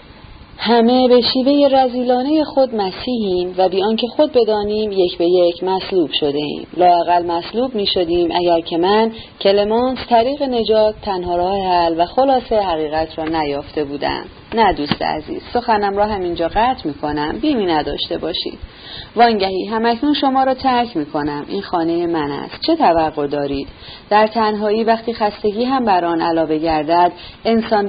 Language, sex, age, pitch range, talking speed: Persian, female, 30-49, 160-220 Hz, 150 wpm